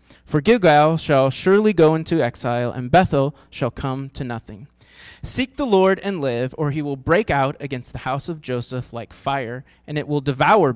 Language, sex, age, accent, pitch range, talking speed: English, male, 30-49, American, 125-165 Hz, 190 wpm